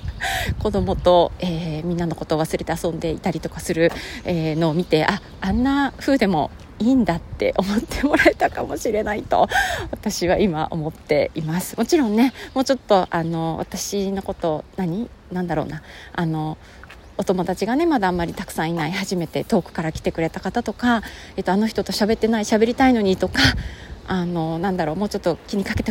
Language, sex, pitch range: Japanese, female, 160-225 Hz